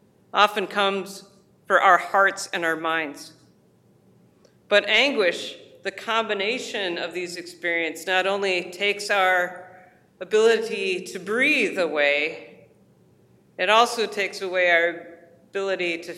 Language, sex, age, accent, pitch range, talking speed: English, female, 40-59, American, 170-210 Hz, 110 wpm